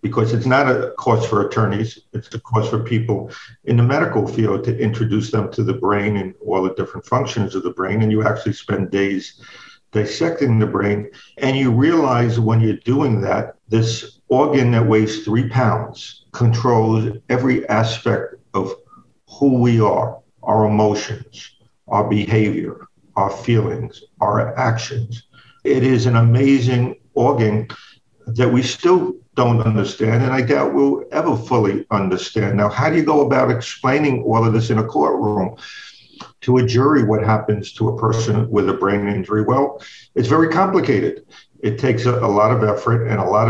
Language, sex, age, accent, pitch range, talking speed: English, male, 50-69, American, 105-125 Hz, 170 wpm